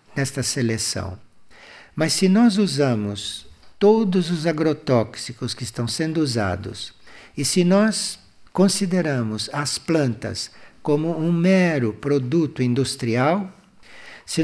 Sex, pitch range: male, 130-190 Hz